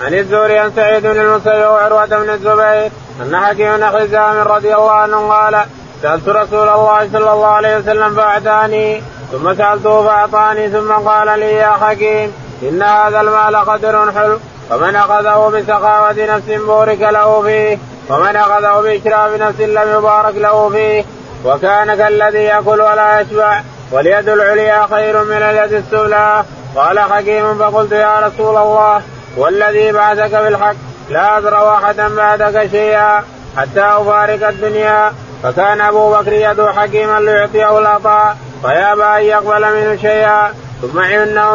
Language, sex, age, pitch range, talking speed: Arabic, male, 20-39, 210-215 Hz, 135 wpm